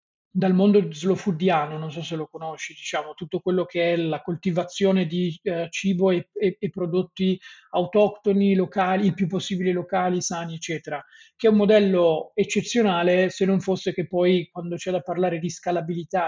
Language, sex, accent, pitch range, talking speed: Italian, male, native, 170-200 Hz, 175 wpm